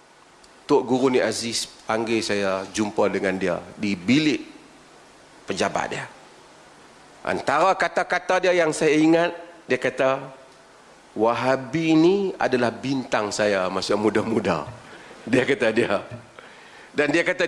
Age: 40-59